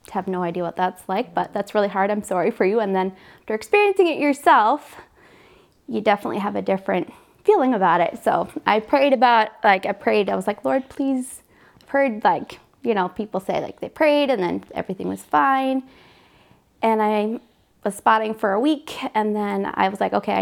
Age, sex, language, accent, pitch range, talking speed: 20-39, female, English, American, 190-235 Hz, 200 wpm